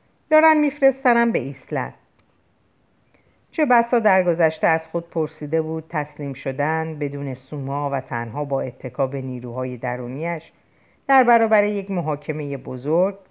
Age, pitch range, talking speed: 50-69, 135-180 Hz, 125 wpm